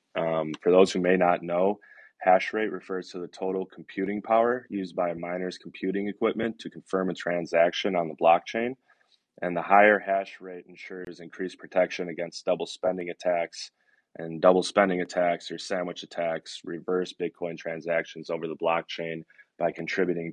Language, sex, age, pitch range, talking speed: English, male, 20-39, 85-95 Hz, 160 wpm